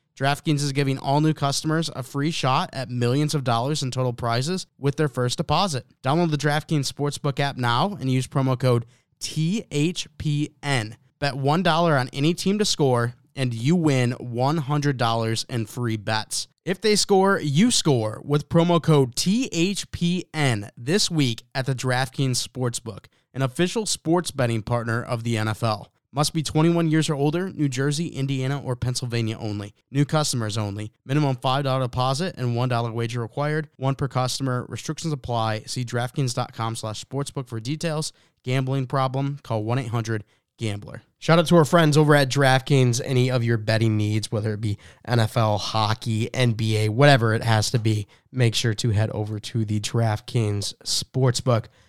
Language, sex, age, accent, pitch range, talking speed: English, male, 20-39, American, 120-150 Hz, 160 wpm